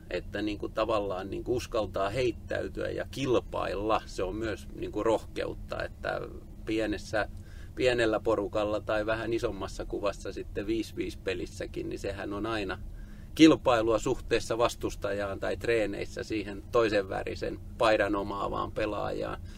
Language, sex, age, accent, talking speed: Finnish, male, 30-49, native, 105 wpm